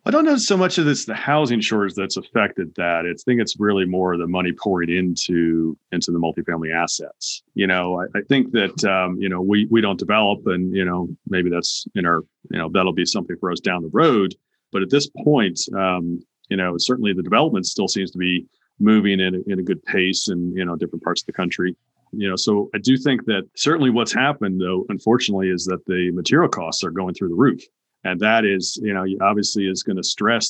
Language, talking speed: English, 230 wpm